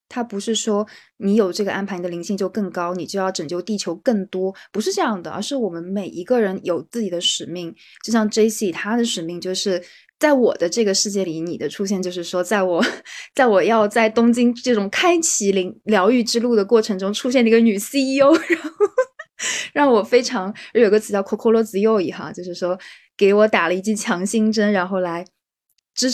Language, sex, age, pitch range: Chinese, female, 20-39, 185-230 Hz